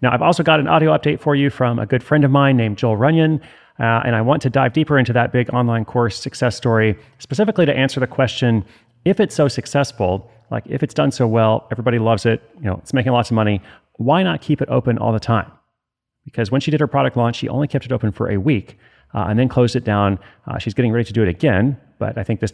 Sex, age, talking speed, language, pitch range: male, 30-49, 260 wpm, English, 105-130 Hz